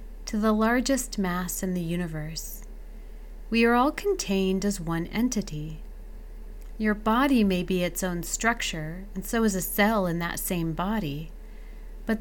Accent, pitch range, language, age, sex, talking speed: American, 180-225 Hz, English, 30-49, female, 150 wpm